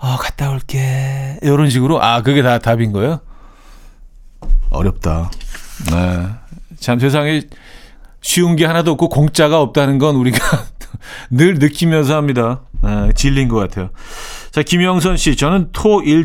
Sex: male